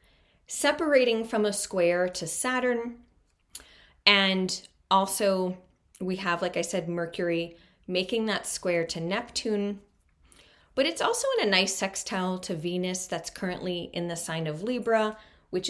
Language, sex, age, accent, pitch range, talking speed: English, female, 30-49, American, 170-210 Hz, 140 wpm